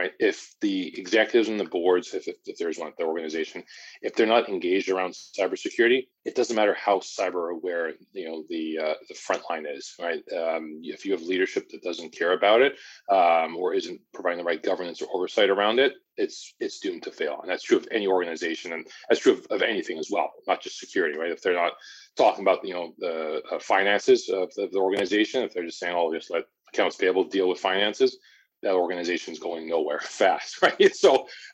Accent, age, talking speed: American, 30-49, 215 wpm